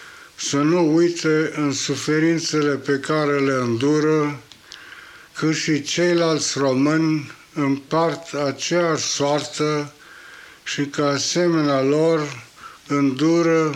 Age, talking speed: 60-79, 90 wpm